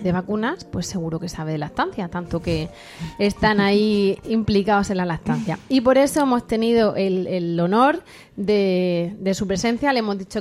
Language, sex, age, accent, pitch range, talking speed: Spanish, female, 30-49, Spanish, 190-245 Hz, 180 wpm